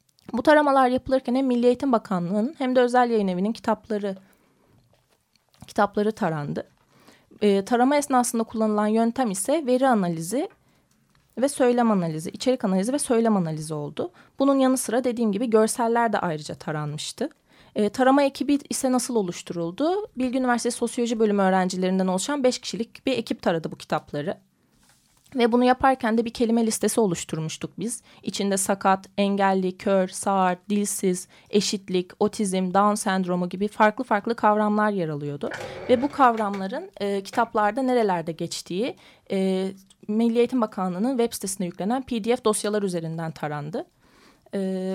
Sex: female